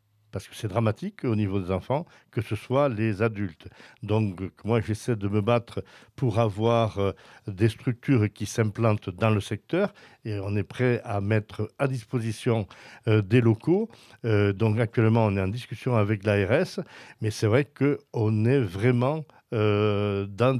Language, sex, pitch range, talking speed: French, male, 105-120 Hz, 155 wpm